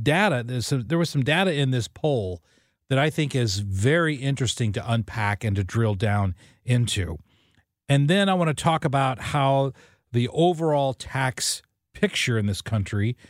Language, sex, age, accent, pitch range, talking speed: English, male, 40-59, American, 110-175 Hz, 165 wpm